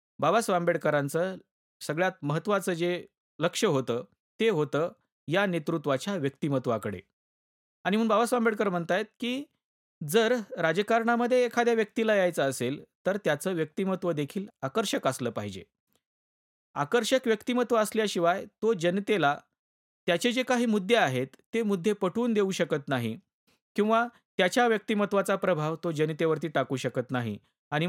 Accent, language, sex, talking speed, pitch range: native, Marathi, male, 125 wpm, 150-225 Hz